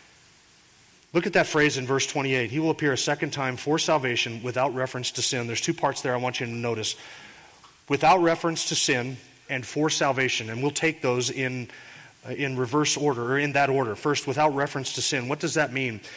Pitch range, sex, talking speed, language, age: 135-165 Hz, male, 210 wpm, English, 30-49